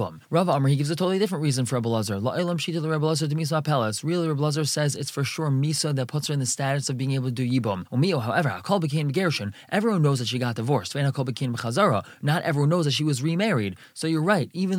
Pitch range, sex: 125-160 Hz, male